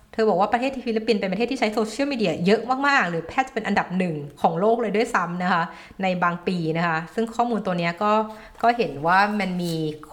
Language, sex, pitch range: Thai, female, 165-215 Hz